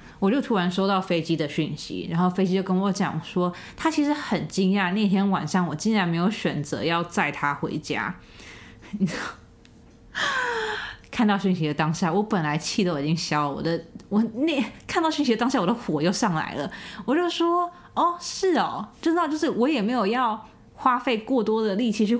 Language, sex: Chinese, female